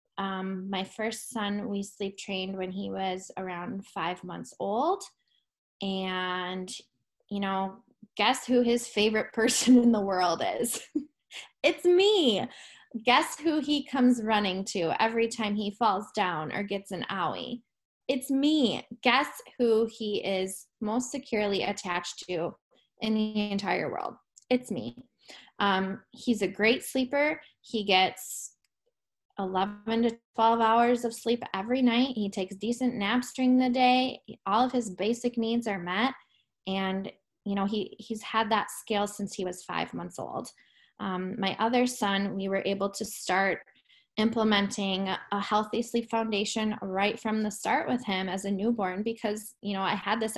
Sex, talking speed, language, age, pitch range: female, 155 wpm, English, 10-29, 195-240 Hz